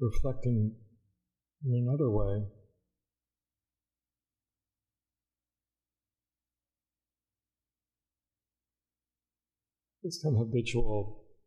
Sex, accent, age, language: male, American, 50-69, English